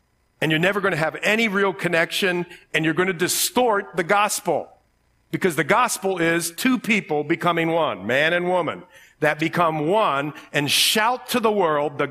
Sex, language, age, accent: male, English, 50-69, American